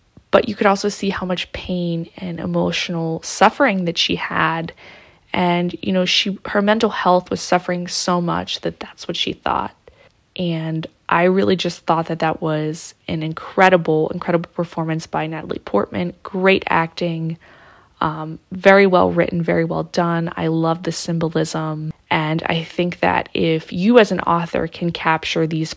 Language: English